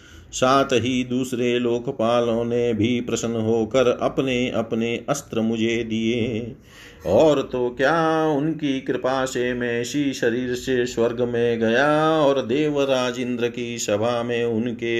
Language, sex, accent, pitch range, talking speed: Hindi, male, native, 115-135 Hz, 130 wpm